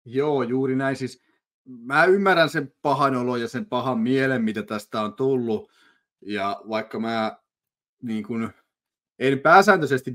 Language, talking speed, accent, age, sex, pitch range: Finnish, 140 wpm, native, 30-49, male, 115-170 Hz